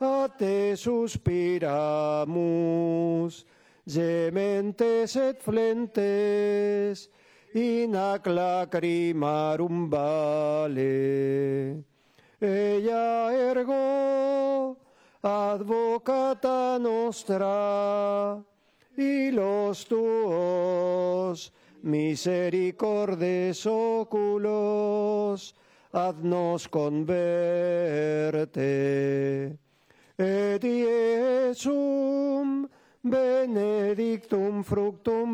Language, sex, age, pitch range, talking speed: Spanish, male, 40-59, 170-230 Hz, 40 wpm